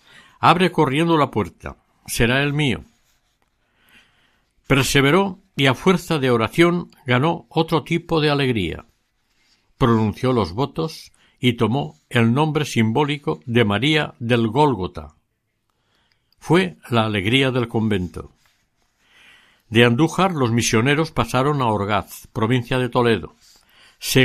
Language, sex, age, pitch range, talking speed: Spanish, male, 60-79, 115-150 Hz, 115 wpm